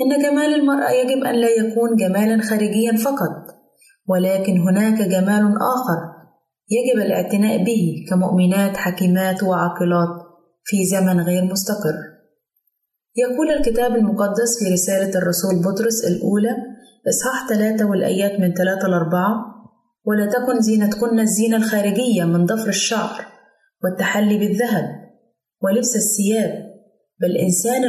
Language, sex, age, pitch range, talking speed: Arabic, female, 20-39, 185-235 Hz, 110 wpm